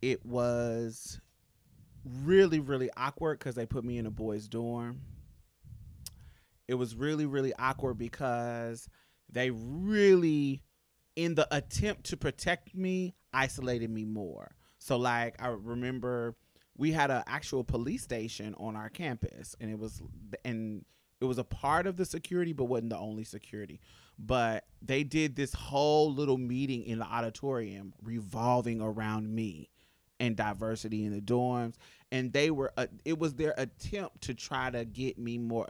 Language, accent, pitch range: English, American, 110-135 Hz